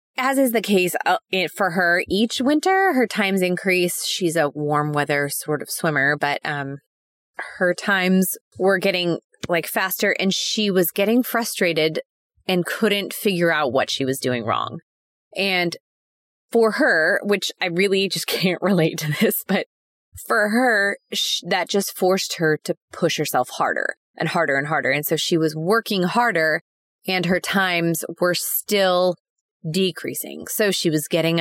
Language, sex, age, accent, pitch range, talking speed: English, female, 20-39, American, 160-210 Hz, 160 wpm